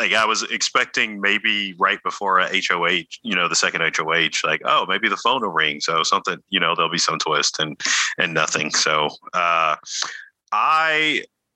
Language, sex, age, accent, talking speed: English, male, 30-49, American, 180 wpm